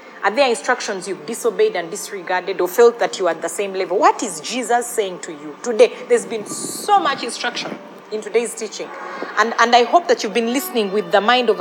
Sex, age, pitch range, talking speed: female, 30-49, 190-240 Hz, 225 wpm